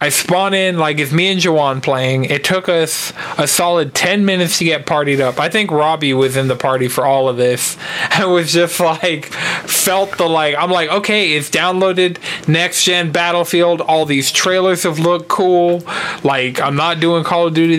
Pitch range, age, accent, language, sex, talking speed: 135-175 Hz, 20-39, American, English, male, 200 wpm